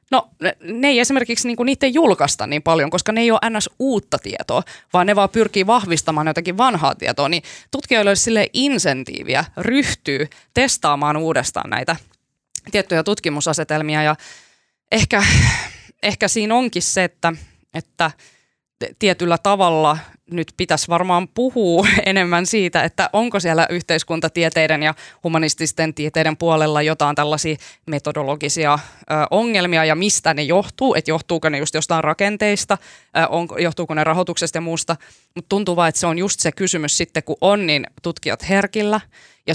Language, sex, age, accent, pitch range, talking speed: Finnish, female, 20-39, native, 155-195 Hz, 145 wpm